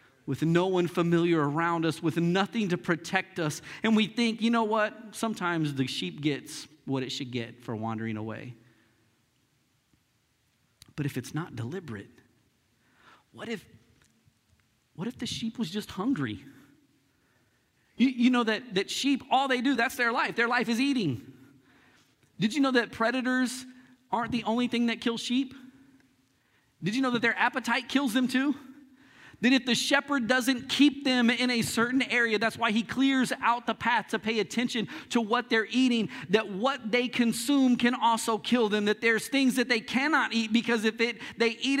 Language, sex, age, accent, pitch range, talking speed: English, male, 40-59, American, 150-245 Hz, 180 wpm